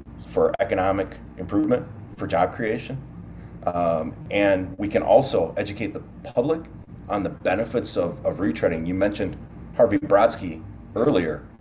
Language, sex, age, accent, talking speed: English, male, 30-49, American, 130 wpm